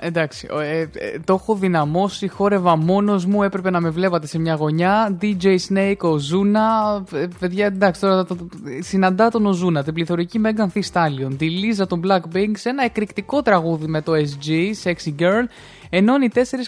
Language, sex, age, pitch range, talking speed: Greek, male, 20-39, 165-205 Hz, 190 wpm